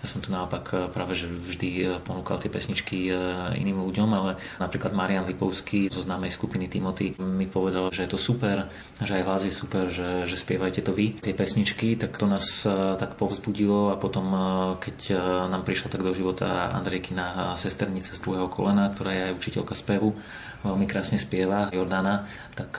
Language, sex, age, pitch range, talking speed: Slovak, male, 20-39, 90-100 Hz, 175 wpm